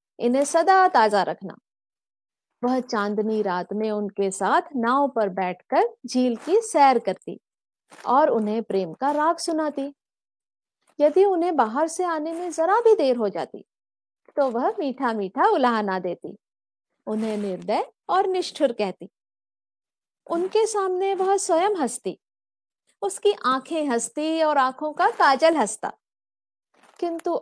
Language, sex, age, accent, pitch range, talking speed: Hindi, female, 50-69, native, 215-320 Hz, 130 wpm